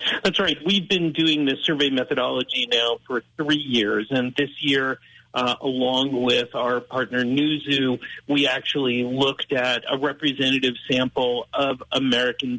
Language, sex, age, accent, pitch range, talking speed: English, male, 50-69, American, 125-150 Hz, 150 wpm